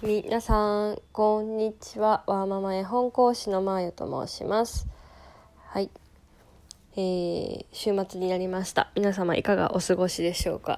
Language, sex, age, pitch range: Japanese, female, 20-39, 180-220 Hz